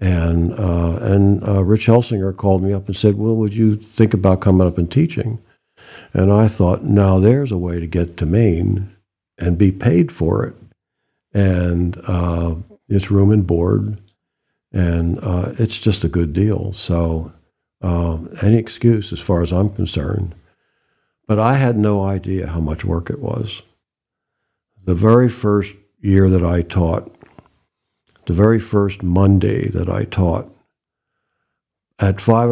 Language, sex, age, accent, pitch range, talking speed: English, male, 60-79, American, 90-105 Hz, 155 wpm